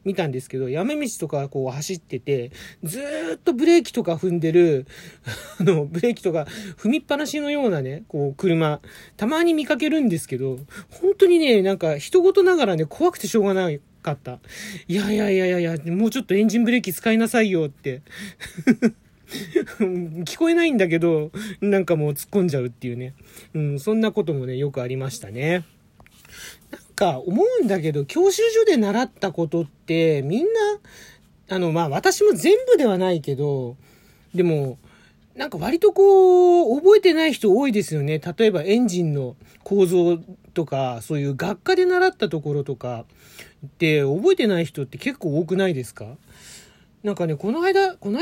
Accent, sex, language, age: native, male, Japanese, 40-59